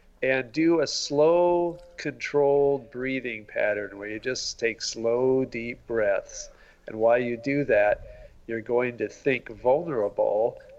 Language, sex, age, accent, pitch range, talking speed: English, male, 50-69, American, 115-145 Hz, 135 wpm